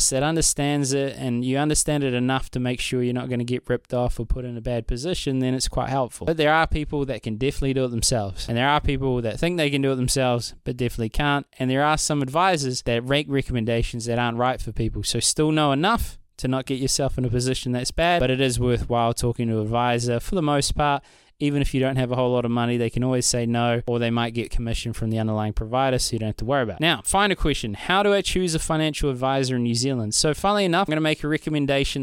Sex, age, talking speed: male, 20-39, 265 wpm